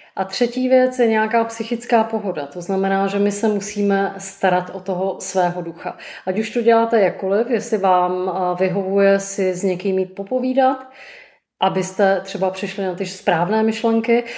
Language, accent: Czech, native